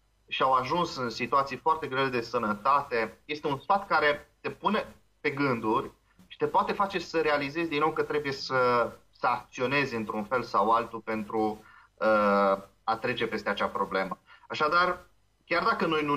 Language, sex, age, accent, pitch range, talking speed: Romanian, male, 30-49, native, 110-150 Hz, 165 wpm